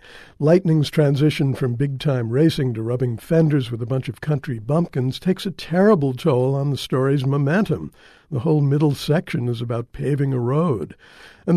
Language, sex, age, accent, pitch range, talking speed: English, male, 60-79, American, 130-160 Hz, 165 wpm